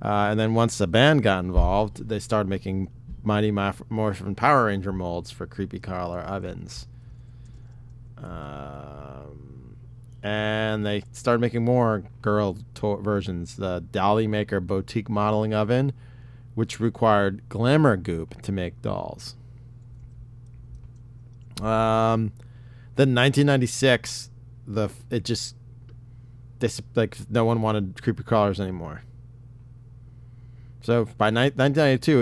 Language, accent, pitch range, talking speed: English, American, 105-120 Hz, 115 wpm